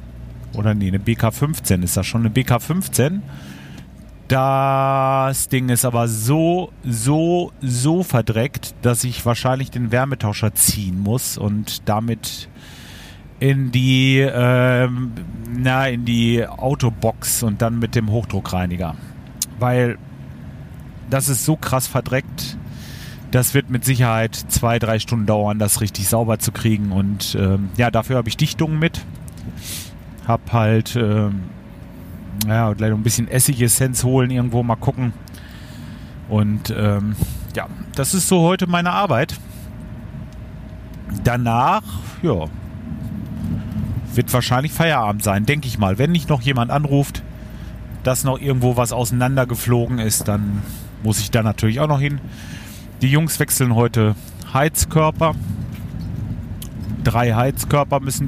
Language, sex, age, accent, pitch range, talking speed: German, male, 40-59, German, 105-130 Hz, 125 wpm